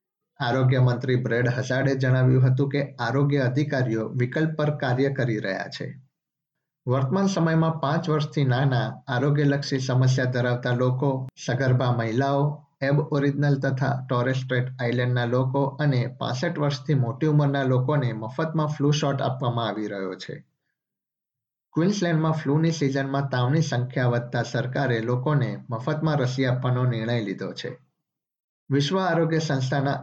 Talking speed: 95 wpm